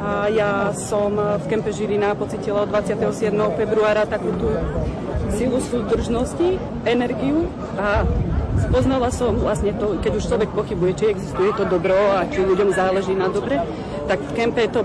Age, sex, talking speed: 30-49, female, 150 wpm